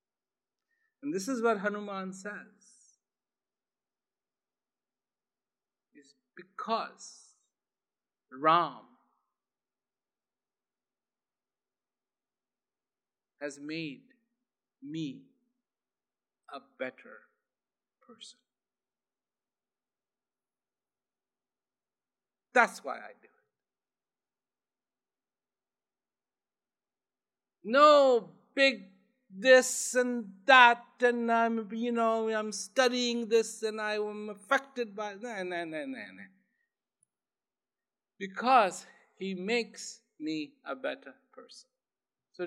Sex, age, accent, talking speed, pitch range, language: male, 50-69, Indian, 70 wpm, 220-290 Hz, English